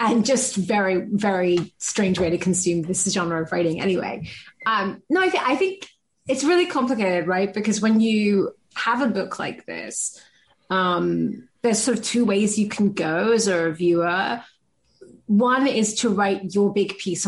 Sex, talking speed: female, 170 wpm